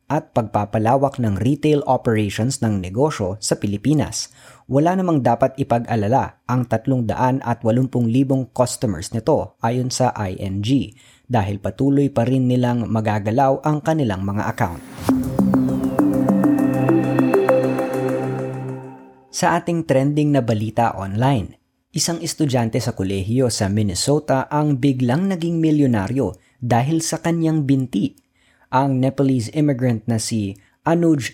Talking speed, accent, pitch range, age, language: 105 wpm, native, 110-140 Hz, 20-39, Filipino